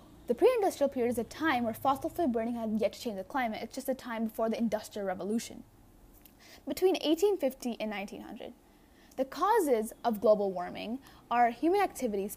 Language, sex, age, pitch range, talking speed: English, female, 10-29, 230-290 Hz, 180 wpm